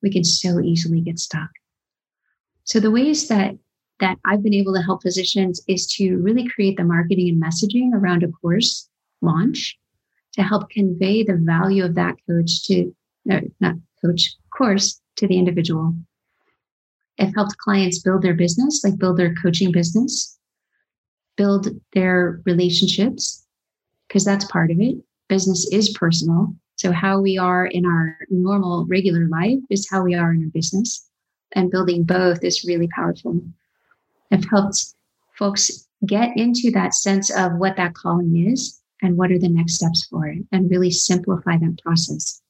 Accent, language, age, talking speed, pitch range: American, English, 30-49, 160 wpm, 175-205 Hz